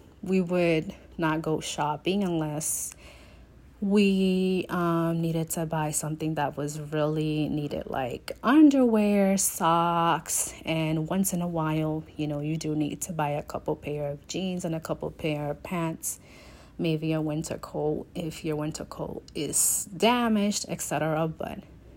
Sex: female